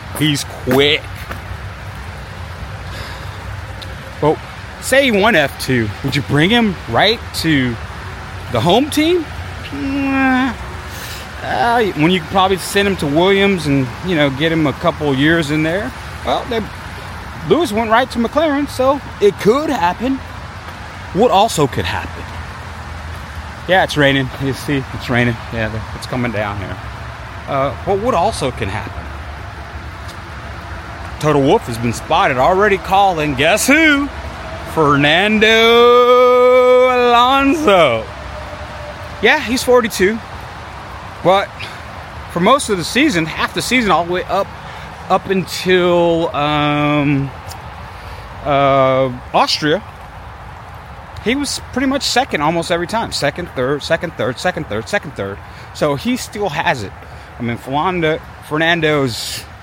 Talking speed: 125 wpm